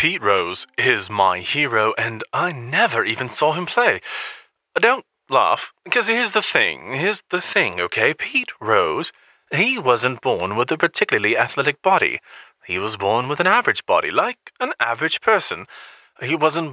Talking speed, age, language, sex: 160 wpm, 30-49, English, male